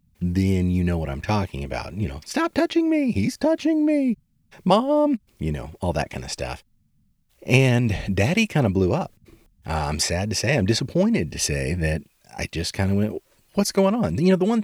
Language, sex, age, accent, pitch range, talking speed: English, male, 30-49, American, 80-115 Hz, 210 wpm